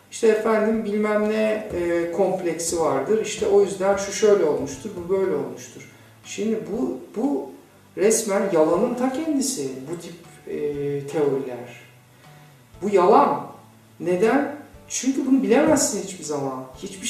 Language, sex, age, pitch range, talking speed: Turkish, male, 50-69, 150-205 Hz, 125 wpm